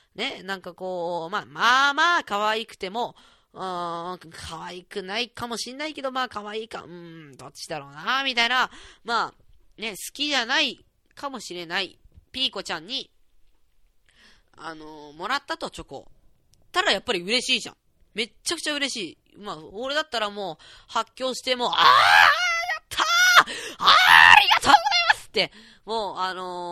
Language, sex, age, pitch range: Japanese, female, 20-39, 175-260 Hz